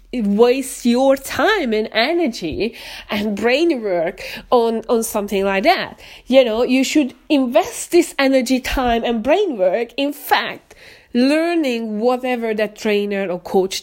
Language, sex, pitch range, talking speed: English, female, 205-270 Hz, 140 wpm